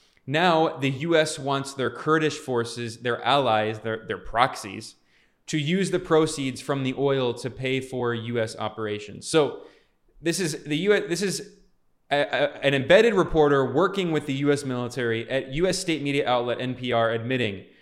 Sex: male